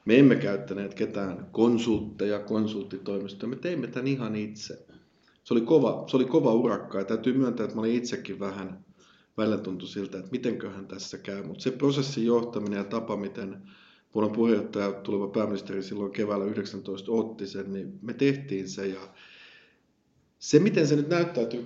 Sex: male